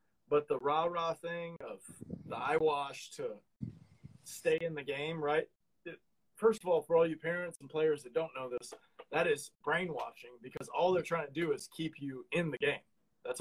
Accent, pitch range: American, 145-210 Hz